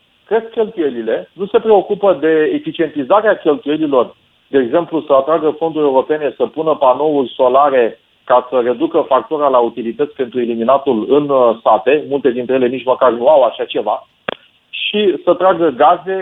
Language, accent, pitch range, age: Romanian, native, 135-185 Hz, 40-59